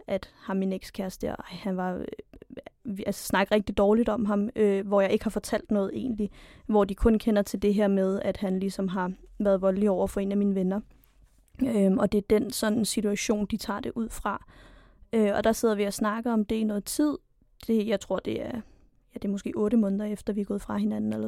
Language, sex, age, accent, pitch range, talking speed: Danish, female, 20-39, native, 200-230 Hz, 230 wpm